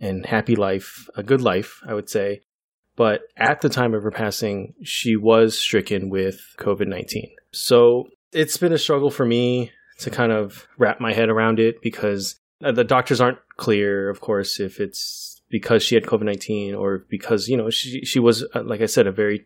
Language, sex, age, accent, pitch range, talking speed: English, male, 20-39, American, 105-120 Hz, 190 wpm